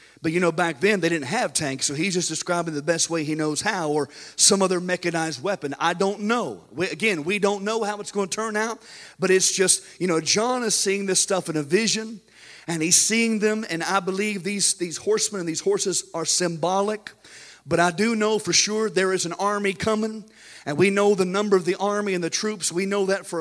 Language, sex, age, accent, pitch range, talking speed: English, male, 50-69, American, 165-205 Hz, 235 wpm